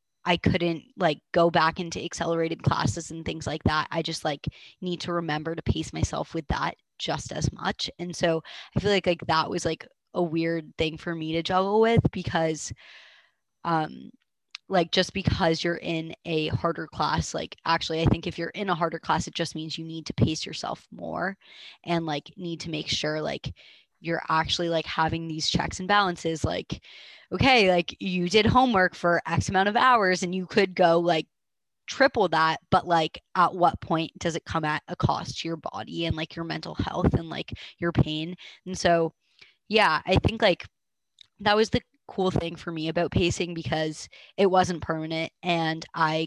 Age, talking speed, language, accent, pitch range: 20-39, 195 wpm, English, American, 160-175 Hz